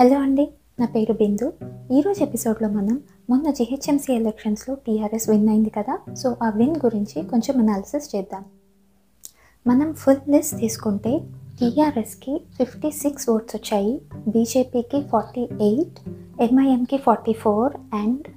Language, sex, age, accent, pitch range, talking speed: Telugu, female, 20-39, native, 215-260 Hz, 125 wpm